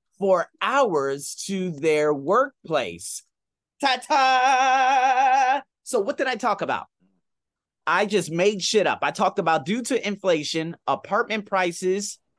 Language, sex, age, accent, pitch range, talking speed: English, male, 30-49, American, 150-230 Hz, 125 wpm